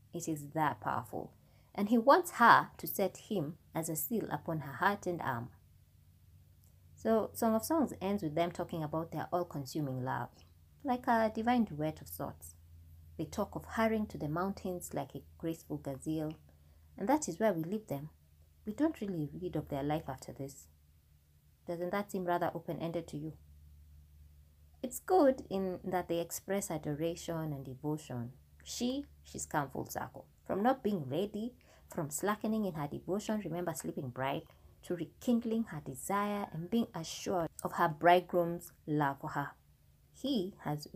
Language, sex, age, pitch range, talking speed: English, female, 20-39, 135-195 Hz, 165 wpm